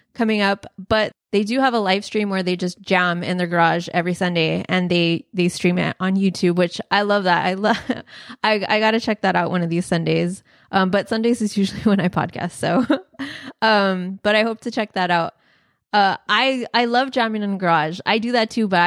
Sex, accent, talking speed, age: female, American, 225 wpm, 20-39